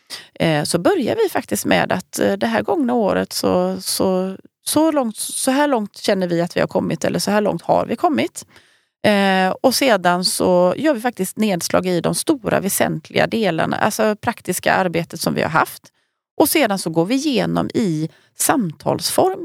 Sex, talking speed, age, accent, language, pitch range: female, 175 wpm, 30-49, native, Swedish, 175-250 Hz